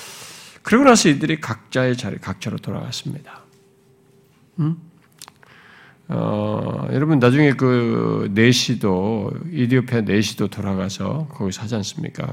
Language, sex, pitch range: Korean, male, 115-165 Hz